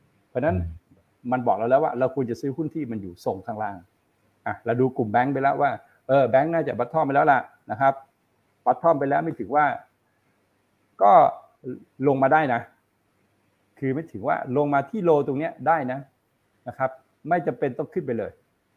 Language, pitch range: Thai, 115-150 Hz